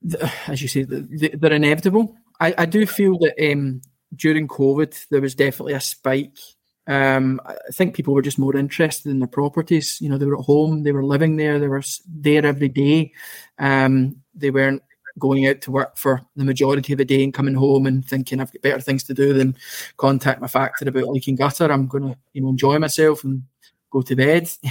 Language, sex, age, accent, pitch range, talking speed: English, male, 20-39, British, 135-150 Hz, 210 wpm